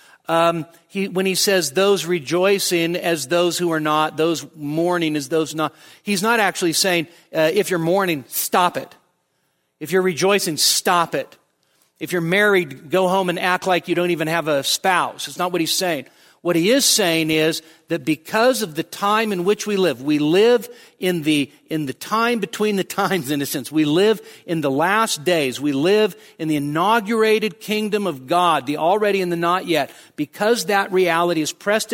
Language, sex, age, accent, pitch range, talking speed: English, male, 50-69, American, 160-215 Hz, 205 wpm